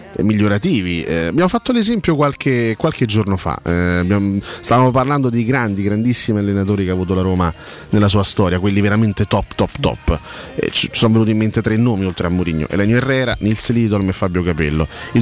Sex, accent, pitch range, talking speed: male, native, 100-115 Hz, 195 wpm